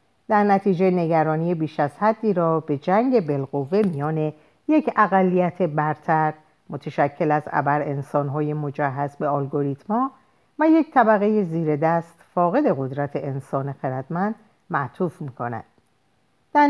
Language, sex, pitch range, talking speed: Persian, female, 145-210 Hz, 115 wpm